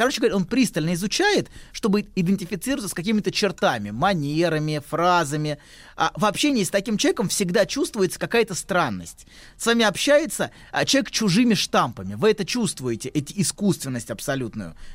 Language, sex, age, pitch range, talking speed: Russian, male, 20-39, 155-220 Hz, 135 wpm